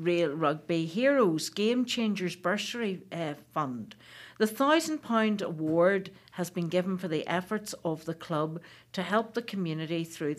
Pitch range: 165-215 Hz